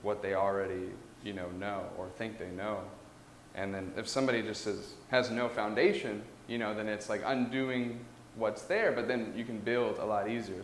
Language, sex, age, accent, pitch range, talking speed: English, male, 10-29, American, 105-140 Hz, 195 wpm